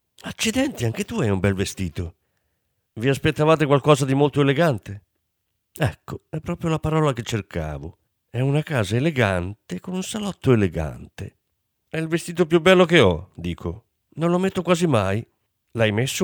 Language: Italian